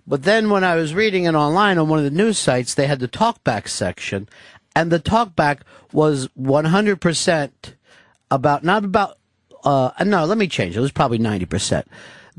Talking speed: 180 wpm